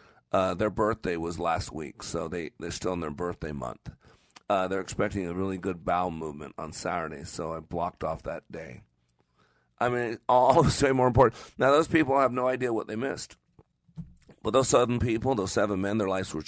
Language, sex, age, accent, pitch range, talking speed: English, male, 40-59, American, 85-105 Hz, 200 wpm